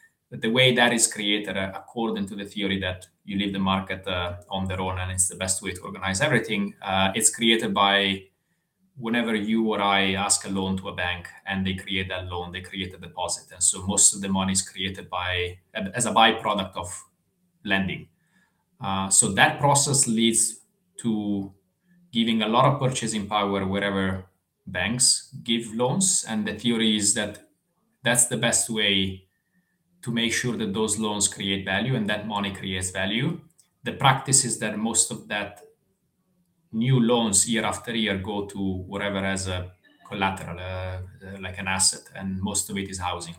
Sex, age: male, 20-39